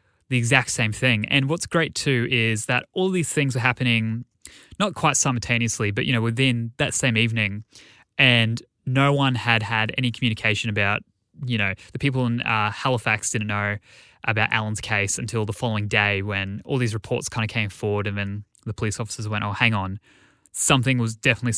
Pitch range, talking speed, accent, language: 105-130 Hz, 190 wpm, Australian, English